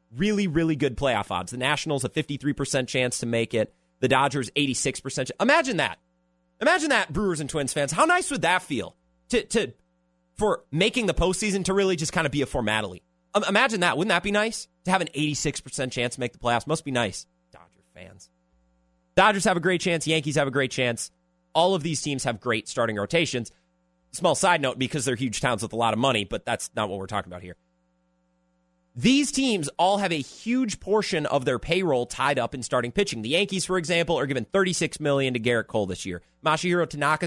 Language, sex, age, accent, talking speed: English, male, 30-49, American, 215 wpm